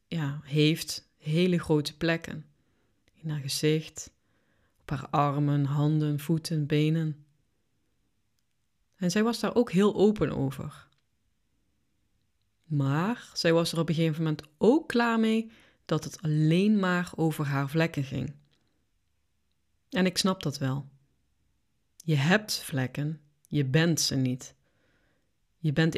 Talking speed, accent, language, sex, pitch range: 125 wpm, Dutch, Dutch, female, 140-180 Hz